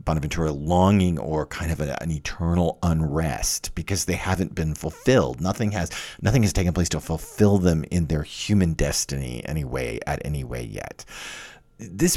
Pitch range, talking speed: 85-145 Hz, 160 wpm